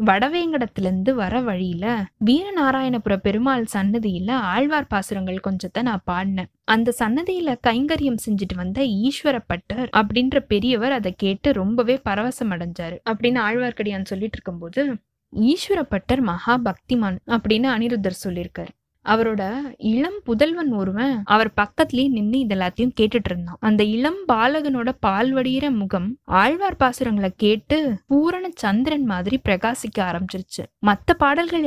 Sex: female